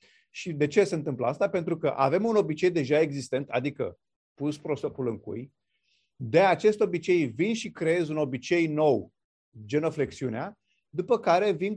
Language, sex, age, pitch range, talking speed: Romanian, male, 30-49, 140-185 Hz, 160 wpm